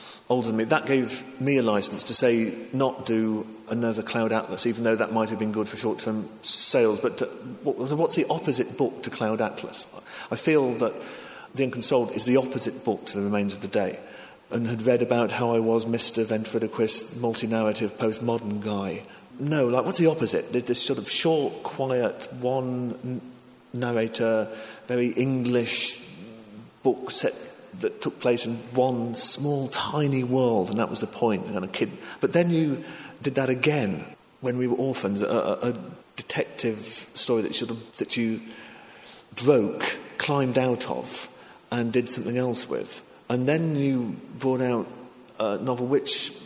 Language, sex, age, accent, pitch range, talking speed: English, male, 40-59, British, 115-130 Hz, 160 wpm